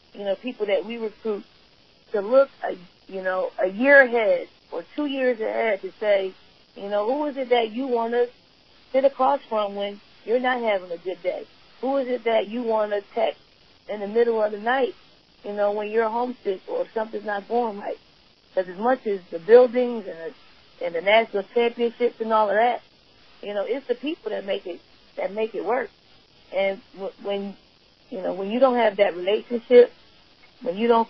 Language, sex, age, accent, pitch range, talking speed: English, female, 40-59, American, 200-250 Hz, 195 wpm